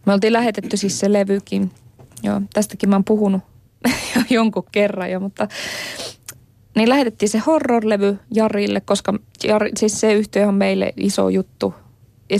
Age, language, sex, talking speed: 20-39, Finnish, female, 150 wpm